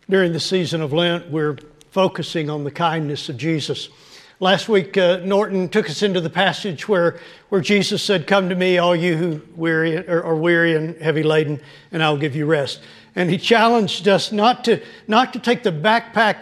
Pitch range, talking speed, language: 150-190 Hz, 195 wpm, English